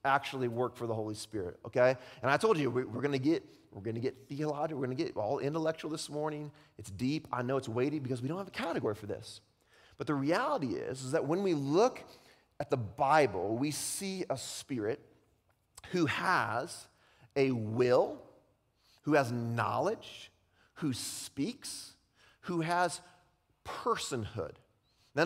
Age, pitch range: 30-49, 130-180 Hz